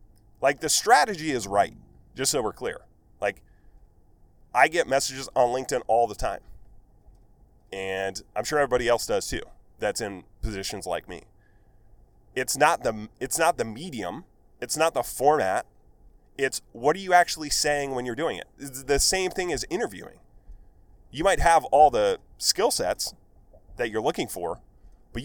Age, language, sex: 30-49, English, male